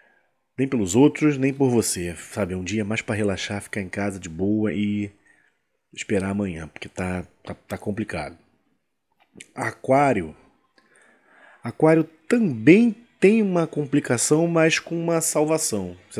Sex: male